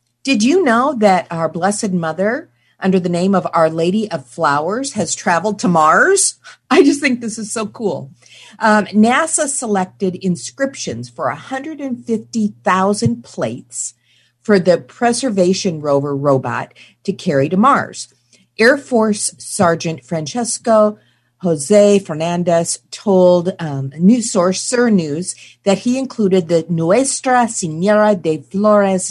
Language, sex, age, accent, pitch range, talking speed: English, female, 50-69, American, 155-215 Hz, 130 wpm